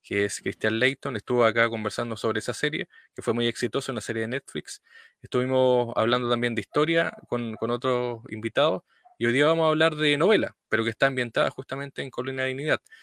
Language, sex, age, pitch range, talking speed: Spanish, male, 20-39, 110-130 Hz, 205 wpm